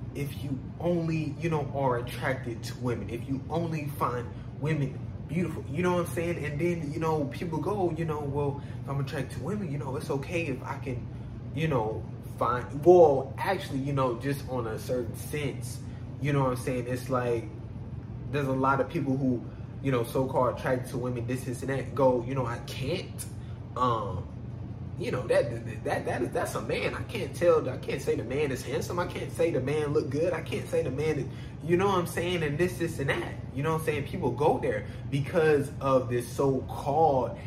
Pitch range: 120-150 Hz